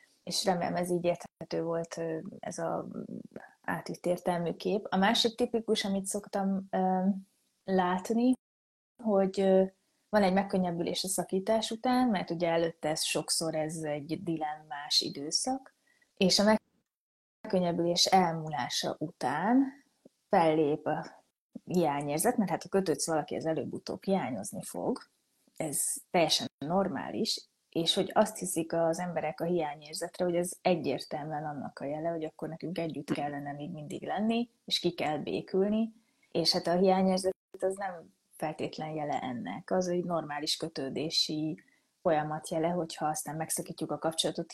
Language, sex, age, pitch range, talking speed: Hungarian, female, 30-49, 155-195 Hz, 130 wpm